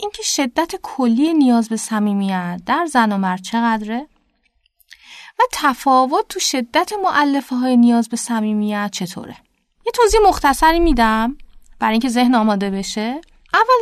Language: Persian